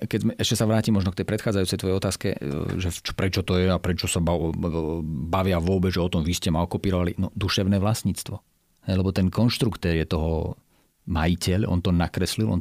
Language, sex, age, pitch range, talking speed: Slovak, male, 40-59, 85-105 Hz, 190 wpm